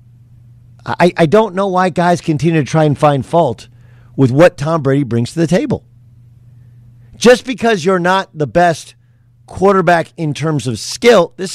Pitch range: 120-180 Hz